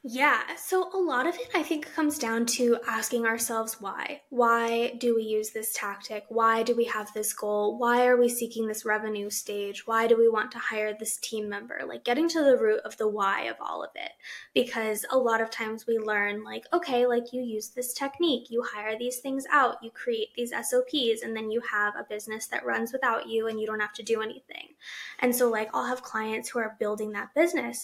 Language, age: English, 20-39